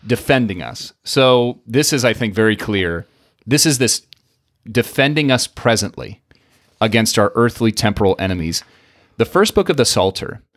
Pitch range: 100-125 Hz